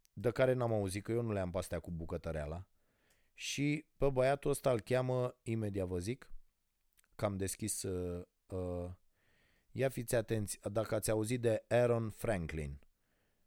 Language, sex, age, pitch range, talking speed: Romanian, male, 30-49, 95-125 Hz, 155 wpm